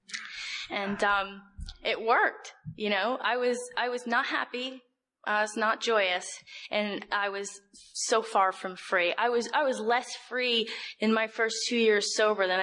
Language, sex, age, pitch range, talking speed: English, female, 20-39, 200-240 Hz, 170 wpm